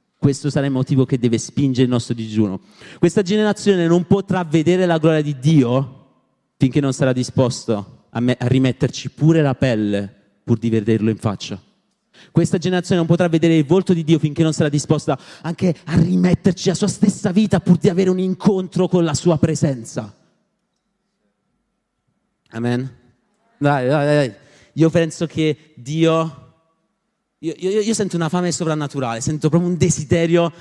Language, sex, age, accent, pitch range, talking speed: Italian, male, 30-49, native, 135-185 Hz, 165 wpm